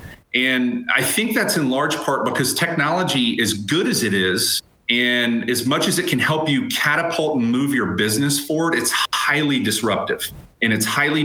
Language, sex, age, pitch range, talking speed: English, male, 30-49, 110-140 Hz, 180 wpm